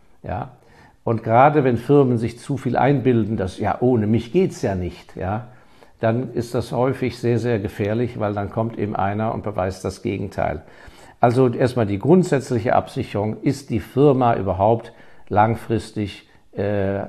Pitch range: 95-125 Hz